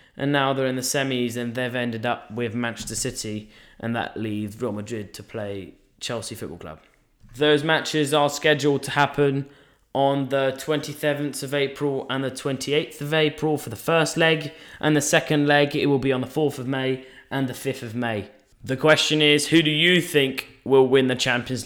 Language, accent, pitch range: English, British, 125-150 Hz